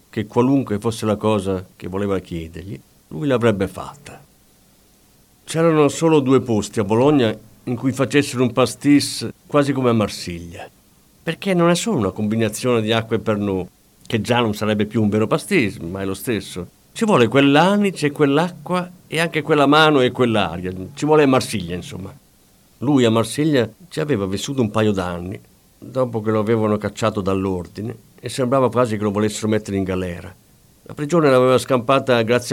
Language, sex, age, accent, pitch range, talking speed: Italian, male, 50-69, native, 105-140 Hz, 170 wpm